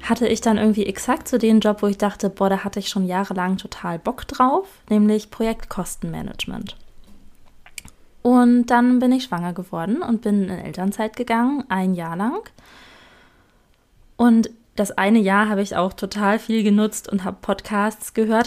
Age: 20-39